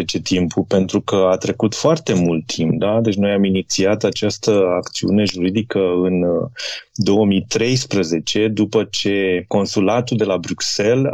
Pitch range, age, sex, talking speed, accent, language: 100-130 Hz, 30-49, male, 120 wpm, native, Romanian